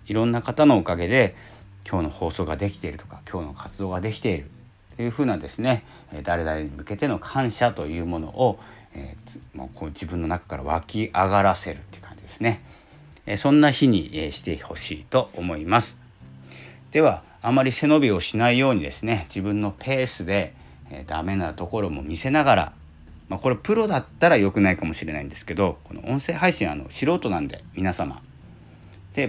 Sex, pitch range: male, 80-110 Hz